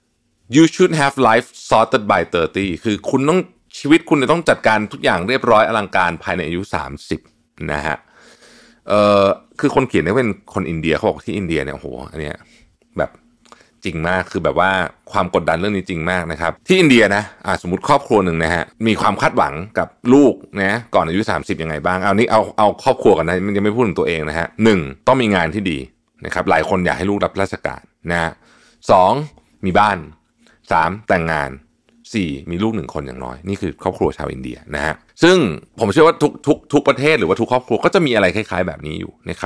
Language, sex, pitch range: Thai, male, 80-120 Hz